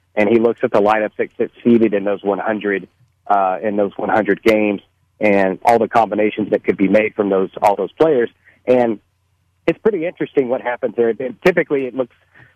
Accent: American